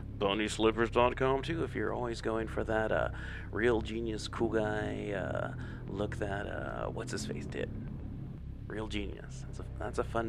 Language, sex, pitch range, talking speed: English, male, 105-125 Hz, 150 wpm